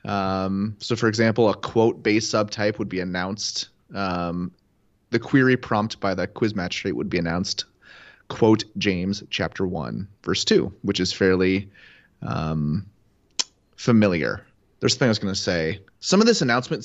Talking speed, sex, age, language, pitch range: 160 wpm, male, 30-49, English, 95-110 Hz